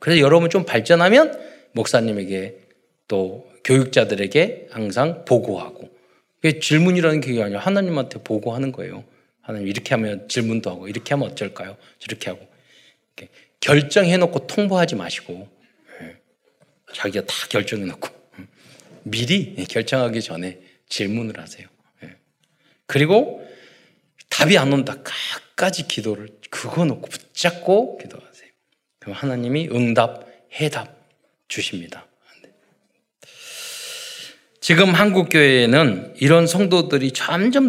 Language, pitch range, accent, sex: Korean, 120-180 Hz, native, male